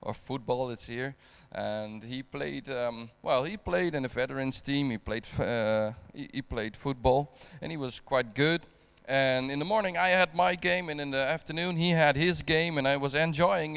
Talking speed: 195 wpm